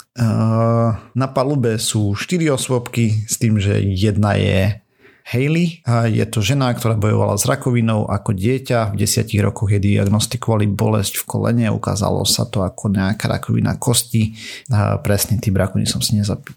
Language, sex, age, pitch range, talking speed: Slovak, male, 30-49, 100-115 Hz, 150 wpm